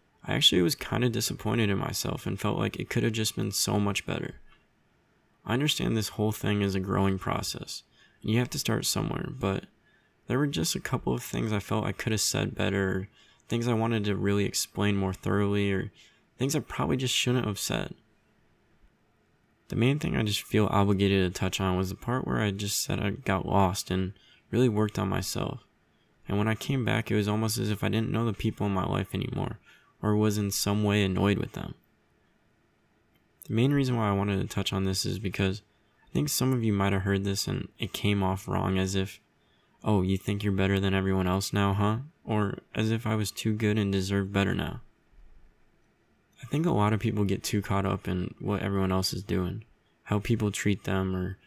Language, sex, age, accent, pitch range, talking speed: English, male, 20-39, American, 95-110 Hz, 220 wpm